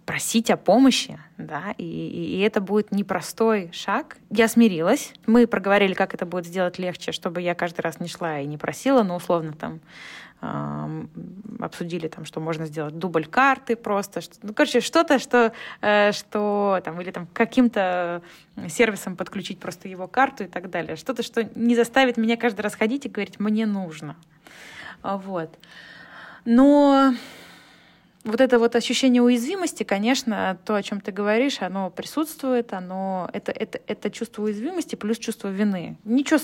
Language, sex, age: Russian, female, 20-39